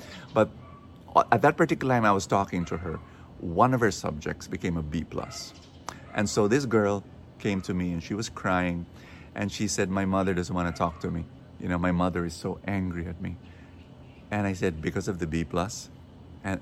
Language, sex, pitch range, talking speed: English, male, 90-150 Hz, 205 wpm